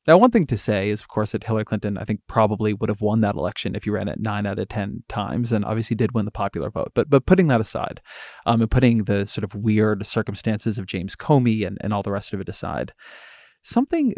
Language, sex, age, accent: English, male, 20-39, American